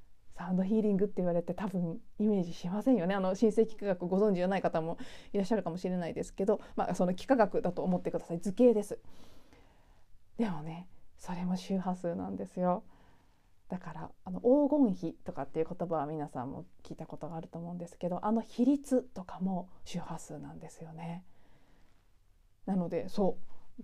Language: Japanese